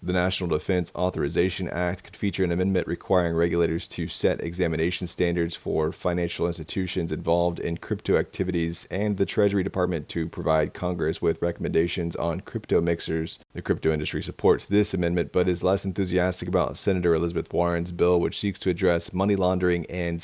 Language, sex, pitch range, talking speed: English, male, 85-95 Hz, 165 wpm